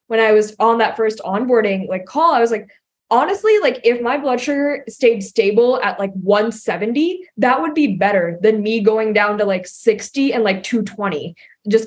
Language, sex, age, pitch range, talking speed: English, female, 20-39, 200-255 Hz, 190 wpm